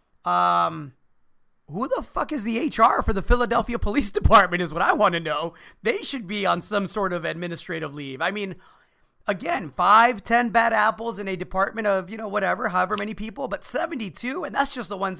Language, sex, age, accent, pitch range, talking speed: English, male, 30-49, American, 145-195 Hz, 200 wpm